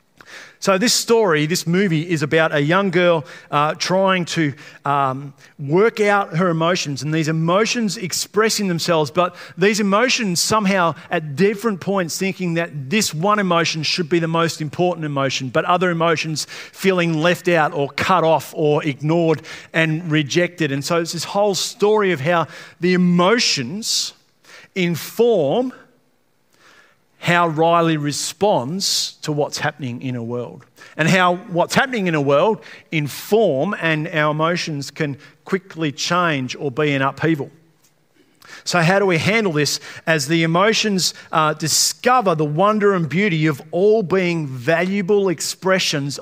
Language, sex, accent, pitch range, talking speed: English, male, Australian, 150-190 Hz, 145 wpm